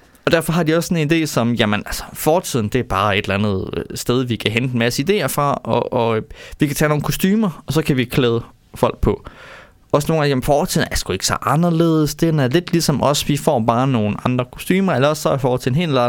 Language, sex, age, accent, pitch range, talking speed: Danish, male, 20-39, native, 110-155 Hz, 245 wpm